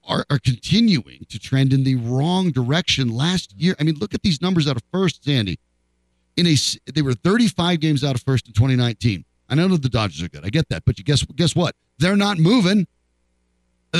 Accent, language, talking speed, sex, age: American, English, 215 wpm, male, 40-59